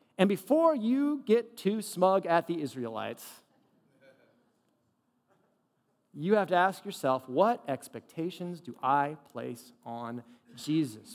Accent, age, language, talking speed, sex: American, 40-59, English, 115 wpm, male